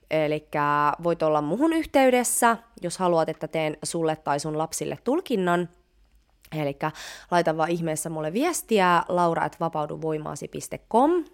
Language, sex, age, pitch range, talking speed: Finnish, female, 20-39, 160-245 Hz, 110 wpm